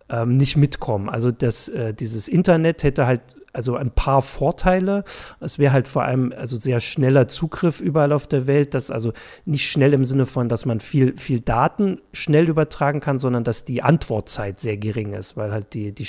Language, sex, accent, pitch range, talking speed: German, male, German, 115-140 Hz, 185 wpm